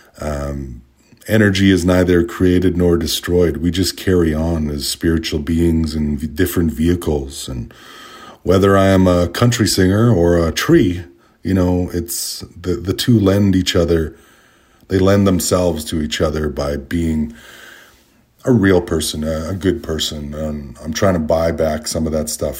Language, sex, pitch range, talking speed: English, male, 80-105 Hz, 165 wpm